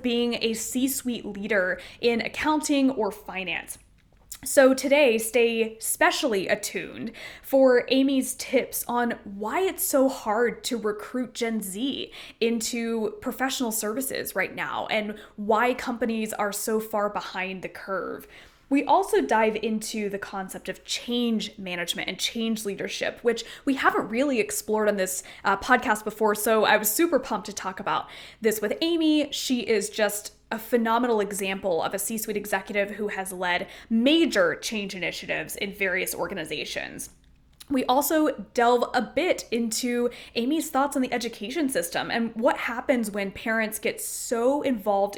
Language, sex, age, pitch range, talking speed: English, female, 10-29, 205-255 Hz, 145 wpm